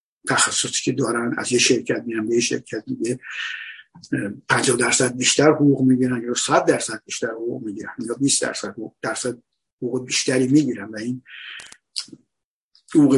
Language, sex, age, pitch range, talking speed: Persian, male, 50-69, 120-135 Hz, 135 wpm